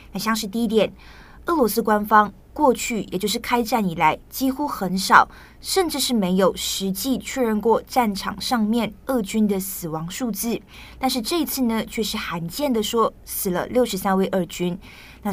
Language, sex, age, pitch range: Chinese, female, 20-39, 190-240 Hz